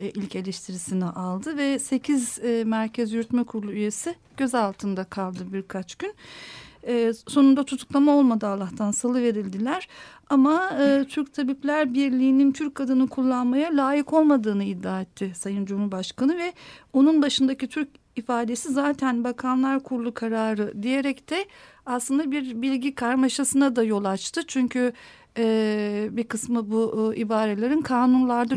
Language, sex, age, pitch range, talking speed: Turkish, female, 50-69, 225-280 Hz, 130 wpm